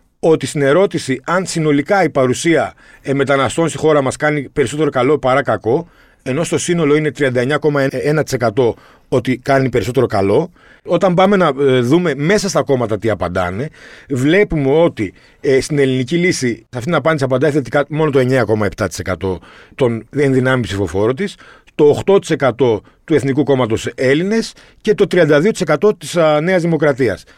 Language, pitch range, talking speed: Greek, 130-170 Hz, 140 wpm